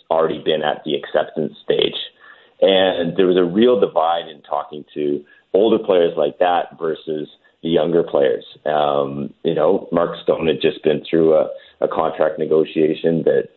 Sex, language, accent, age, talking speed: male, English, American, 30-49, 165 wpm